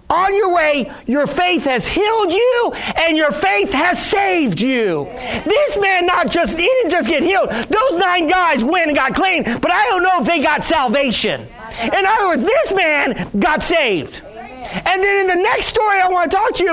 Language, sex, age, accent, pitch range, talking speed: English, male, 40-59, American, 300-370 Hz, 205 wpm